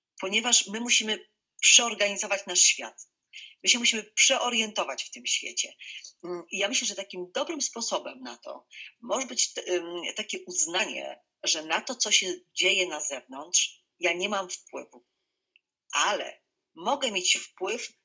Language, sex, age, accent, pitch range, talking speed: Polish, female, 40-59, native, 185-265 Hz, 140 wpm